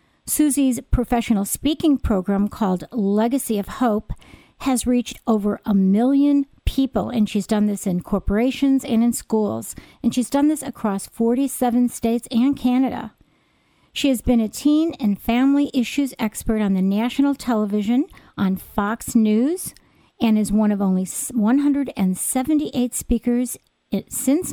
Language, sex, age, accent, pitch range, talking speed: English, female, 50-69, American, 205-265 Hz, 135 wpm